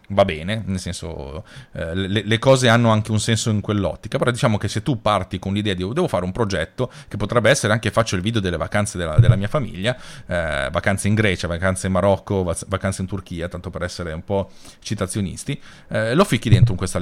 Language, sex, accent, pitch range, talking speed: Italian, male, native, 95-120 Hz, 210 wpm